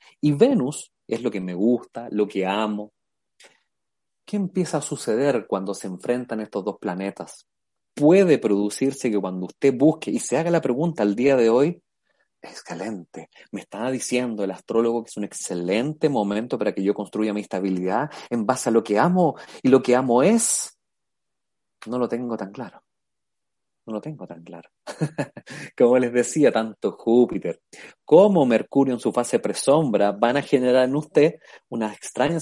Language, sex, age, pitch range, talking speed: Spanish, male, 30-49, 105-135 Hz, 170 wpm